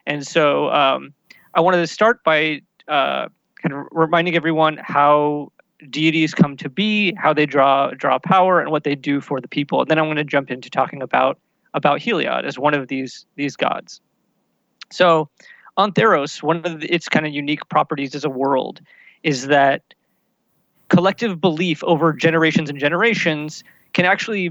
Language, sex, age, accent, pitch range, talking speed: English, male, 30-49, American, 145-175 Hz, 175 wpm